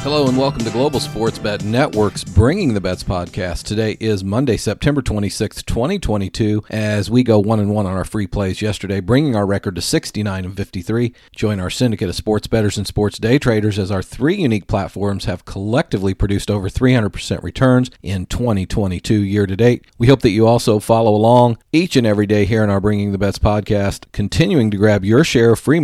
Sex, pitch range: male, 100-115 Hz